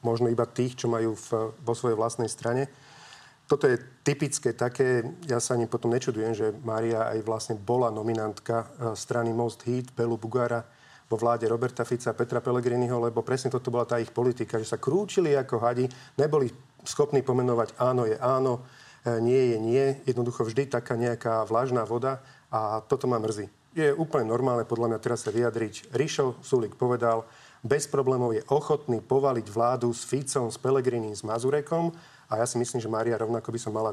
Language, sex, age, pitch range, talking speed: Slovak, male, 40-59, 115-130 Hz, 175 wpm